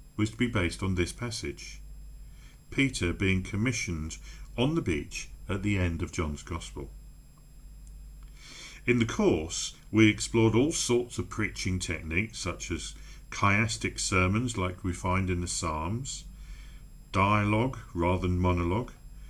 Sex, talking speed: male, 135 wpm